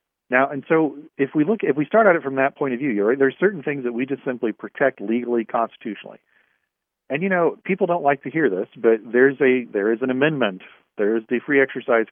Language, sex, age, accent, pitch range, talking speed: English, male, 40-59, American, 110-145 Hz, 240 wpm